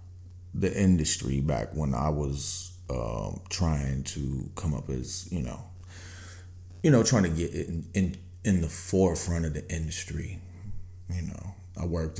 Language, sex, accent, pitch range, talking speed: English, male, American, 80-90 Hz, 150 wpm